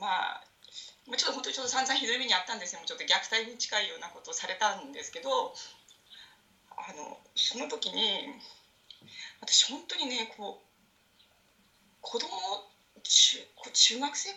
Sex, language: female, Japanese